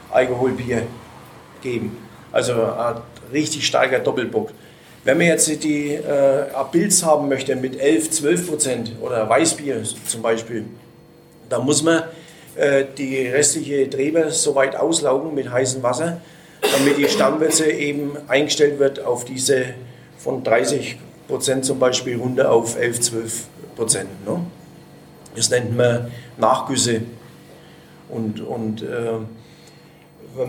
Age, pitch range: 40-59, 125-155 Hz